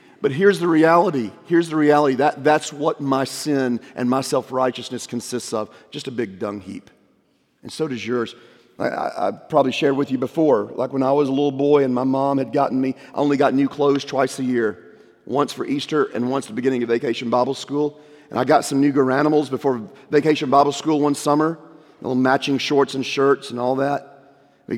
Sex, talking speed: male, 215 wpm